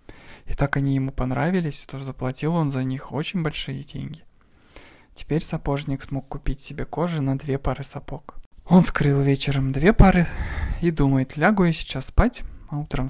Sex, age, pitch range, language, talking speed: male, 20-39, 130-155 Hz, Russian, 165 wpm